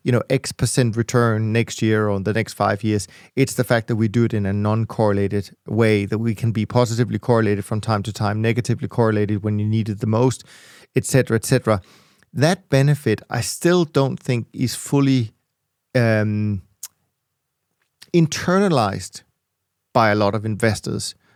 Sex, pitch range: male, 110-130 Hz